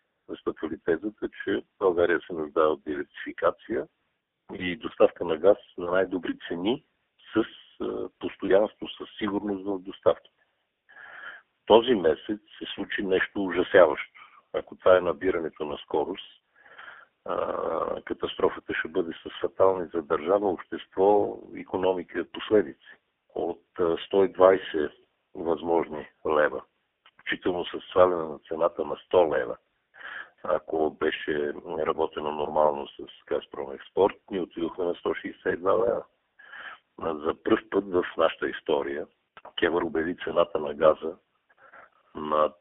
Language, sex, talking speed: Bulgarian, male, 110 wpm